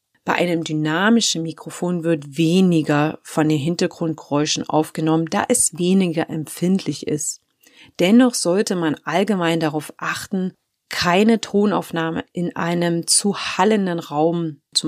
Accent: German